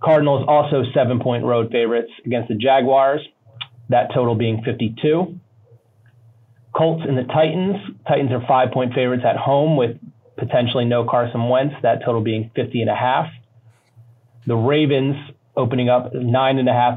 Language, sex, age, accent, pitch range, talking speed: English, male, 30-49, American, 115-135 Hz, 155 wpm